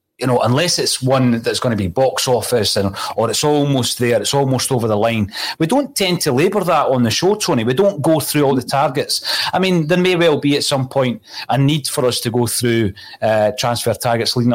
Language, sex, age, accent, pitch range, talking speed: English, male, 30-49, British, 115-150 Hz, 240 wpm